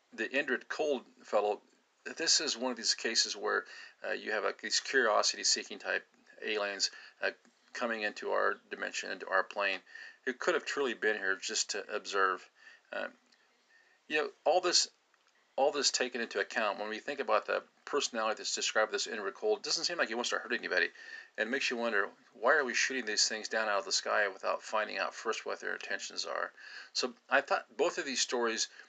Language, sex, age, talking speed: English, male, 40-59, 200 wpm